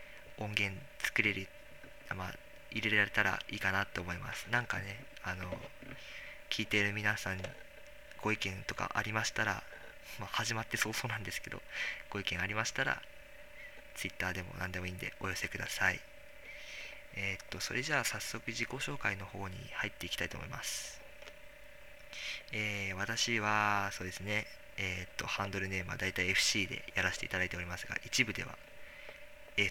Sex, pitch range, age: male, 95-125 Hz, 20-39